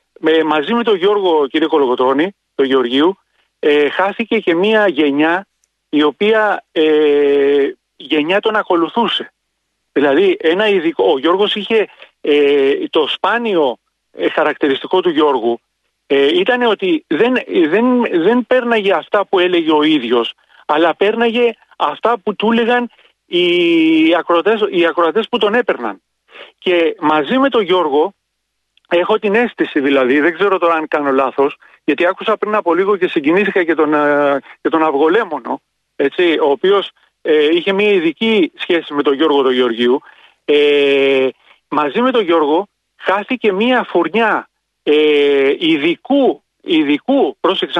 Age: 40-59